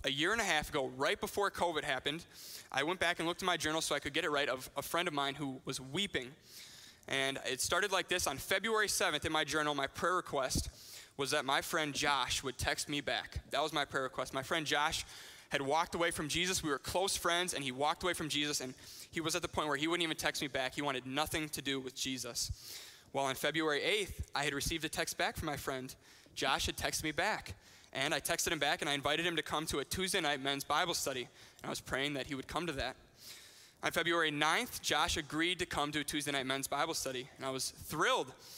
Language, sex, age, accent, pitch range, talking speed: English, male, 20-39, American, 140-170 Hz, 250 wpm